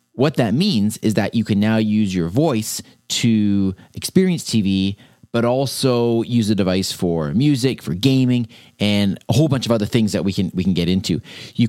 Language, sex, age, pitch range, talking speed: English, male, 30-49, 100-130 Hz, 190 wpm